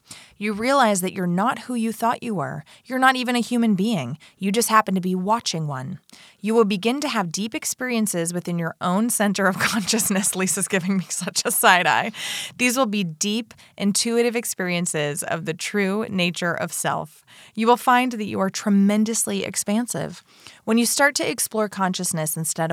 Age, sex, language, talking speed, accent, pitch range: 20-39, female, English, 185 wpm, American, 170-225 Hz